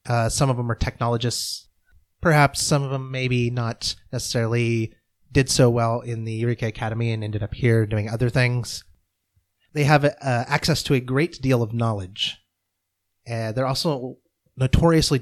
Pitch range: 110-130 Hz